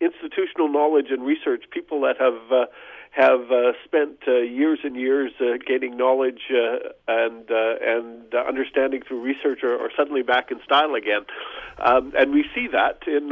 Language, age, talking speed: English, 50-69, 175 wpm